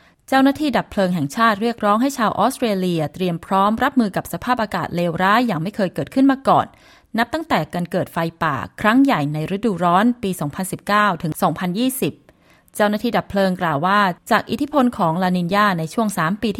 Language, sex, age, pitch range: Thai, female, 20-39, 170-220 Hz